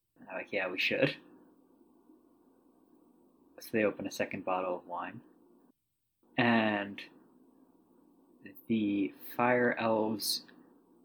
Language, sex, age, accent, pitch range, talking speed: English, male, 20-39, American, 110-170 Hz, 85 wpm